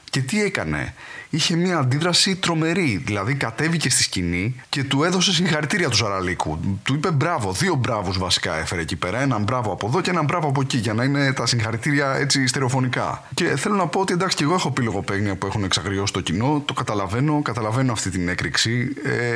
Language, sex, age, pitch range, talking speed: English, male, 30-49, 100-145 Hz, 200 wpm